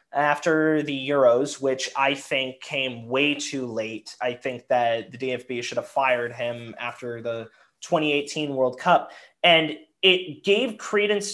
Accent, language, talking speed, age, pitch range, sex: American, English, 150 wpm, 20-39, 135-170 Hz, male